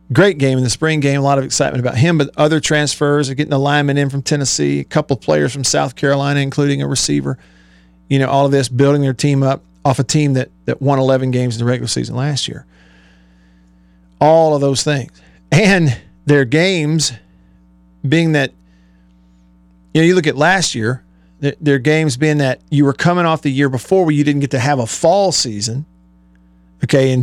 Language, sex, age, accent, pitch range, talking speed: English, male, 40-59, American, 115-150 Hz, 205 wpm